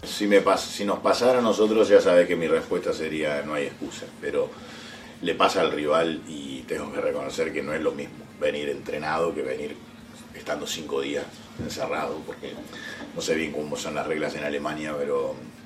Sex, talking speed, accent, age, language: male, 190 wpm, Argentinian, 40-59, Spanish